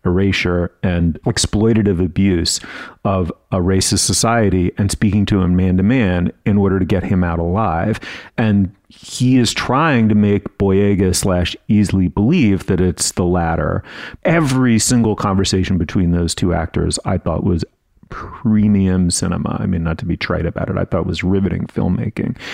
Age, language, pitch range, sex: 40-59, English, 90-115 Hz, male